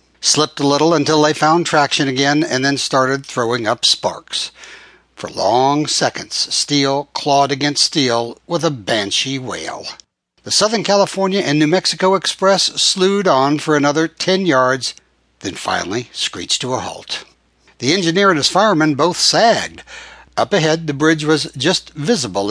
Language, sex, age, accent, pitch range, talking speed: English, male, 60-79, American, 130-165 Hz, 155 wpm